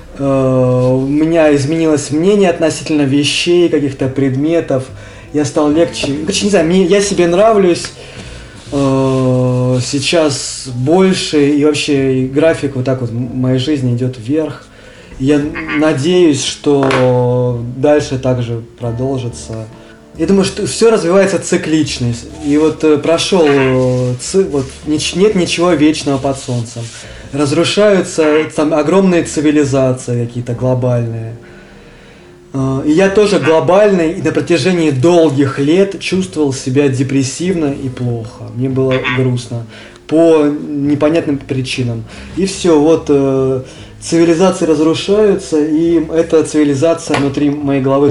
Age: 20-39